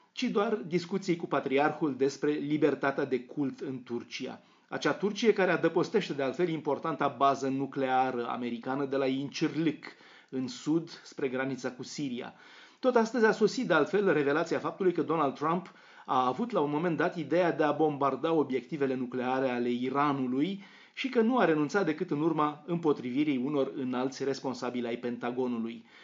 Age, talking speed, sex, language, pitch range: 30-49, 160 wpm, male, Romanian, 130-180 Hz